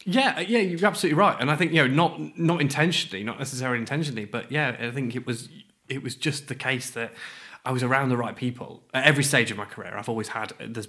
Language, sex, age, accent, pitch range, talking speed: English, male, 20-39, British, 110-130 Hz, 240 wpm